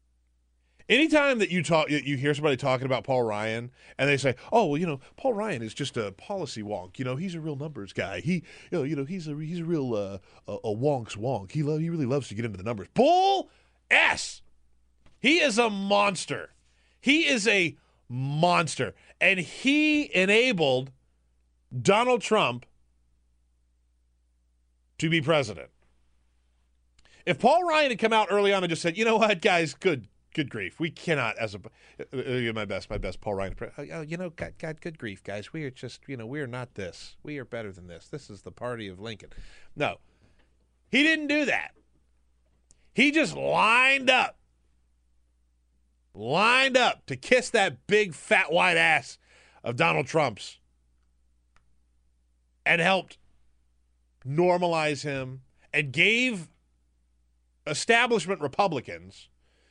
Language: English